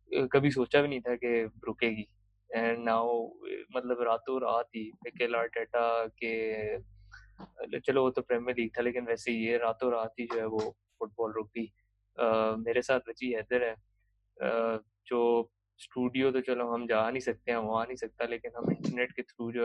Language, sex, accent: English, male, Indian